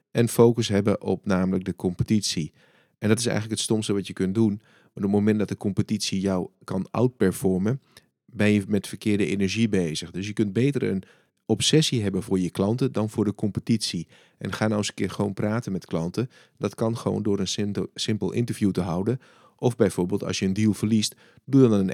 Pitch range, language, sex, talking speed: 95-110 Hz, Dutch, male, 210 wpm